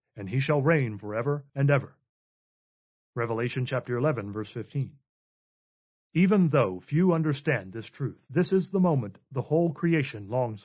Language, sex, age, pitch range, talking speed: English, male, 40-59, 120-155 Hz, 145 wpm